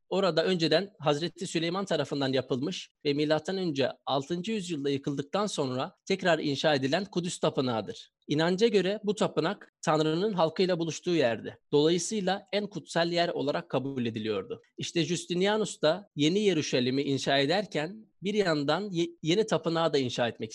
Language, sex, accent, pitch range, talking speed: Turkish, male, native, 145-190 Hz, 135 wpm